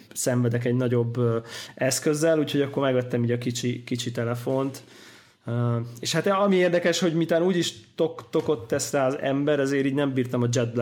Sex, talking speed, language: male, 175 wpm, Hungarian